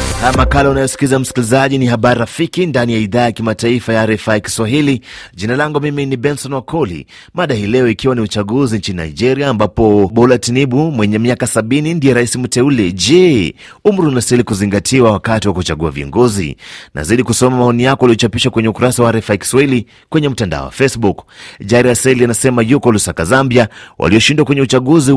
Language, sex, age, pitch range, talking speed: Swahili, male, 30-49, 110-140 Hz, 160 wpm